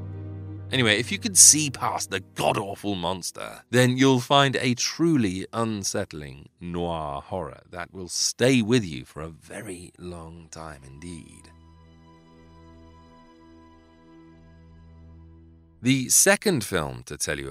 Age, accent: 30-49, British